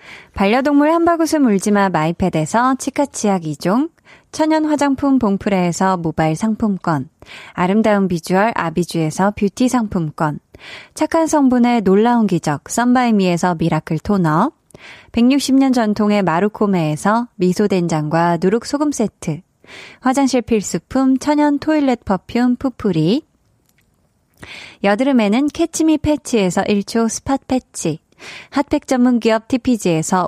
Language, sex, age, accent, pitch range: Korean, female, 20-39, native, 185-270 Hz